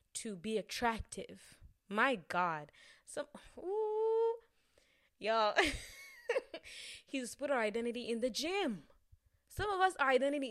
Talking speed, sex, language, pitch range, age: 110 wpm, female, English, 170-265 Hz, 20-39